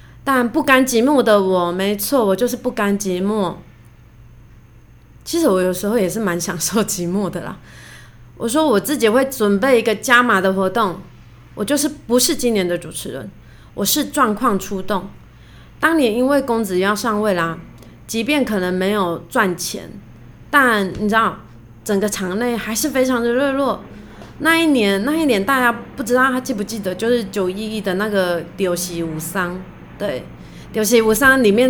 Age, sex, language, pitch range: 20-39, female, Chinese, 180-255 Hz